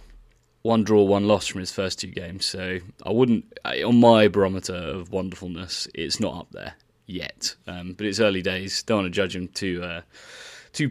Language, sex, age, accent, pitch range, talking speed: English, male, 20-39, British, 90-105 Hz, 195 wpm